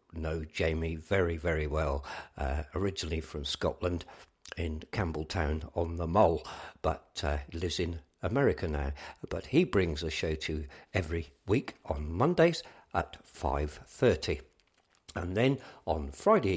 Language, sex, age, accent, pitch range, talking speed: English, male, 60-79, British, 75-100 Hz, 130 wpm